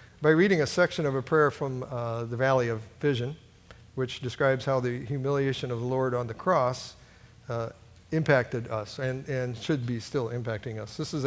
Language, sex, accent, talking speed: English, male, American, 190 wpm